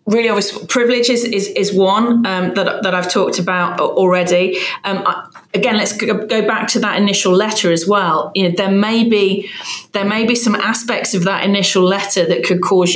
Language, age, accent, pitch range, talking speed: English, 30-49, British, 175-210 Hz, 200 wpm